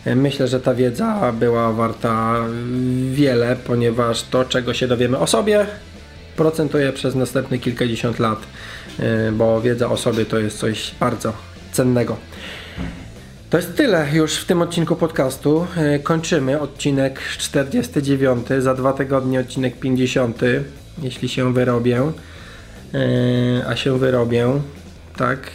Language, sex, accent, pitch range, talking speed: Polish, male, native, 125-150 Hz, 120 wpm